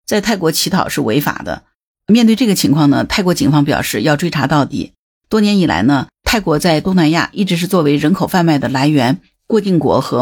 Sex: female